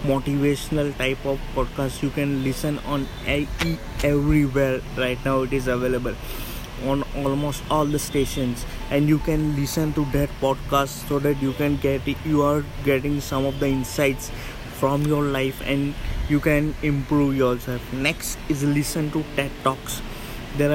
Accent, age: Indian, 20-39